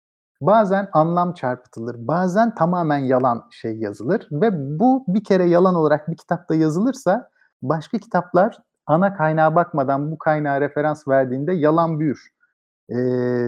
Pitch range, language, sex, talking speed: 140-185 Hz, Turkish, male, 130 wpm